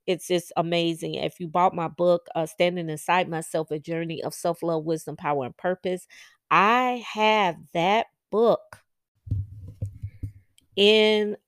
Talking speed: 130 wpm